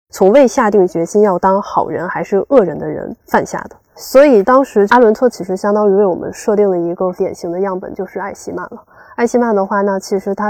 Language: Chinese